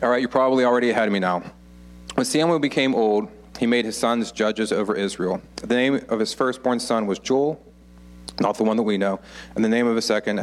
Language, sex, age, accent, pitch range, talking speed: English, male, 40-59, American, 85-115 Hz, 230 wpm